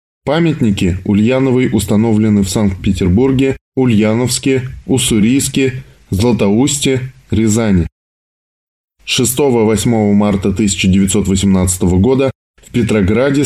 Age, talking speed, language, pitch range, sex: 10-29, 60 wpm, Russian, 100-130 Hz, male